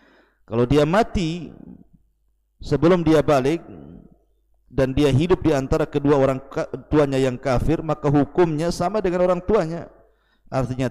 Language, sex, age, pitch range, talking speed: Indonesian, male, 50-69, 120-155 Hz, 130 wpm